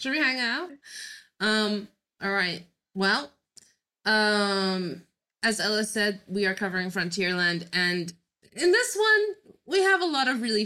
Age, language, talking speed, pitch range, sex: 20-39, English, 145 wpm, 170-210 Hz, female